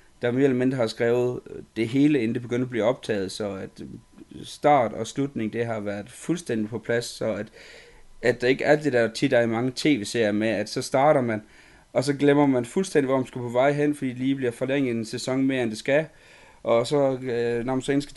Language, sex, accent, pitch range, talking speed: Danish, male, native, 115-135 Hz, 240 wpm